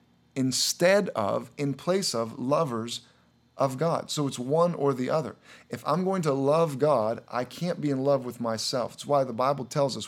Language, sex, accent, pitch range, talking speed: English, male, American, 125-145 Hz, 195 wpm